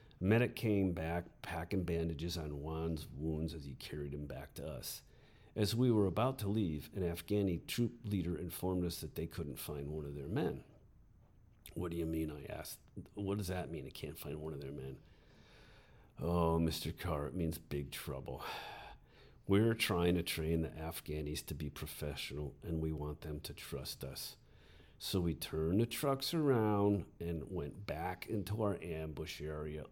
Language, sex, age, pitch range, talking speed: English, male, 50-69, 80-105 Hz, 175 wpm